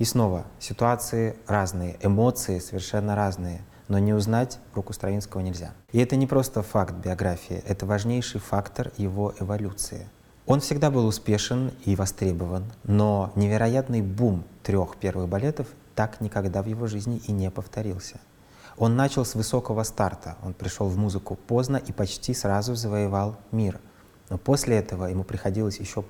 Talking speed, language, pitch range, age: 150 wpm, Russian, 100-120 Hz, 20-39